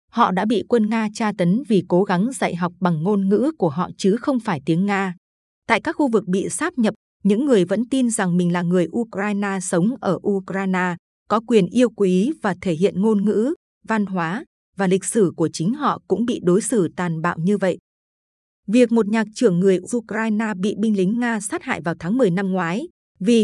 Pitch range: 185-230 Hz